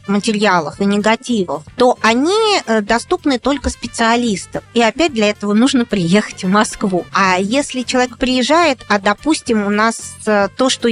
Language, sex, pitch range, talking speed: Russian, female, 210-275 Hz, 145 wpm